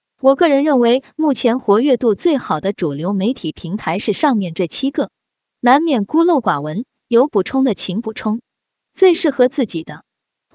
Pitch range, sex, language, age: 200-290 Hz, female, Chinese, 20-39